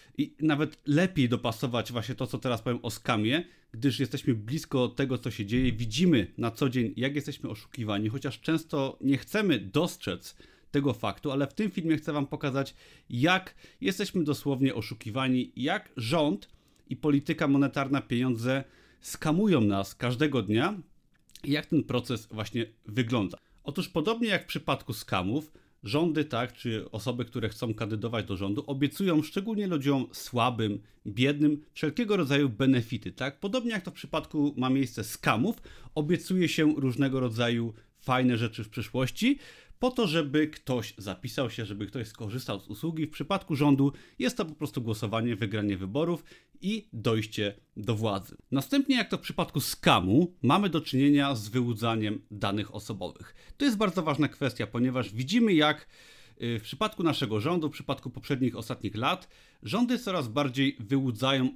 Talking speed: 155 wpm